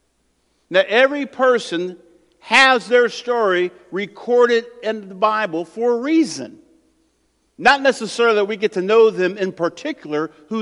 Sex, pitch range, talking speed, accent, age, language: male, 195-270 Hz, 135 wpm, American, 50-69, English